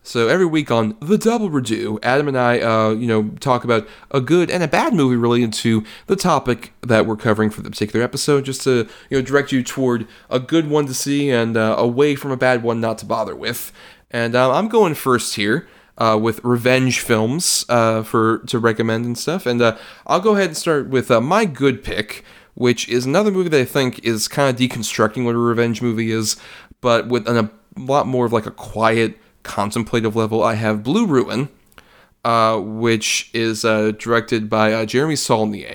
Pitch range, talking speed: 110-130 Hz, 210 wpm